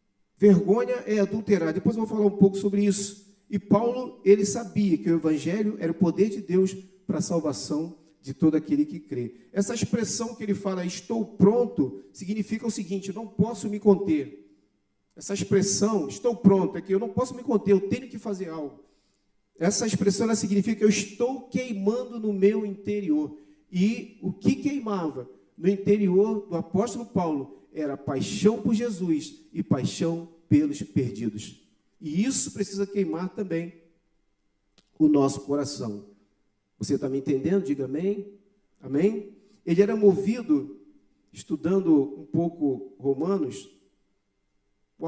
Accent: Brazilian